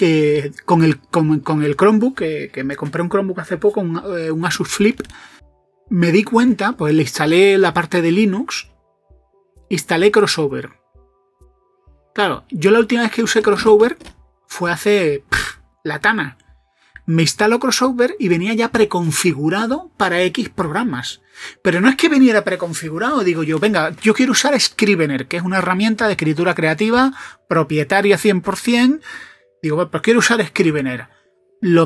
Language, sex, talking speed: Spanish, male, 155 wpm